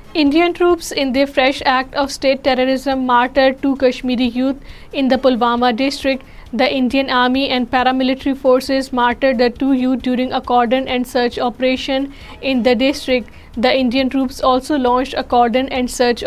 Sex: female